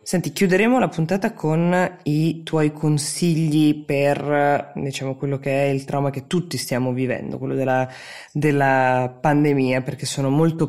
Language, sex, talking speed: Italian, female, 145 wpm